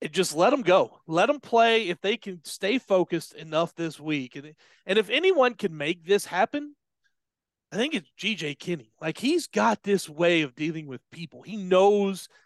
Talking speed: 195 wpm